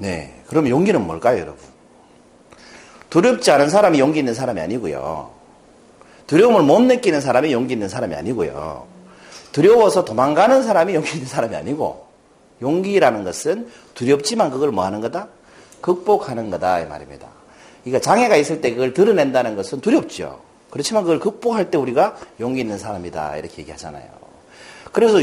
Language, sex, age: Korean, male, 40-59